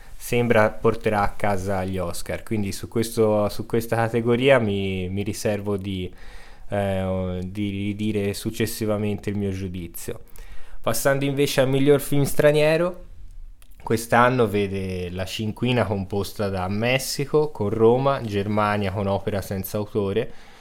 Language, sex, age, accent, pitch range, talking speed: Italian, male, 20-39, native, 95-115 Hz, 120 wpm